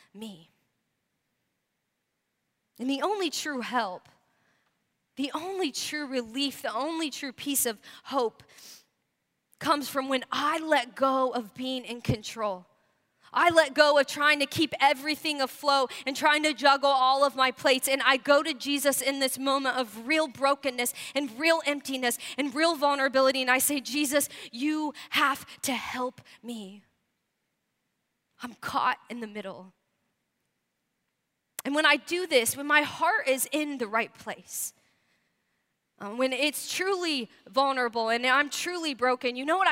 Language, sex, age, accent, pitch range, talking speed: English, female, 10-29, American, 240-290 Hz, 150 wpm